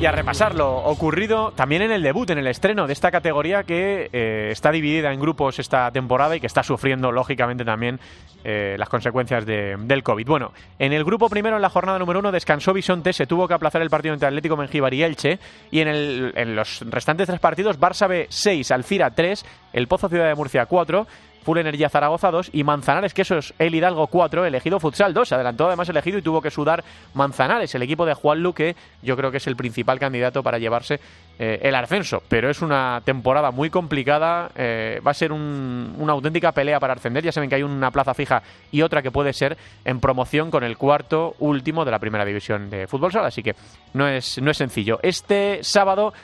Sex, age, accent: male, 30-49, Spanish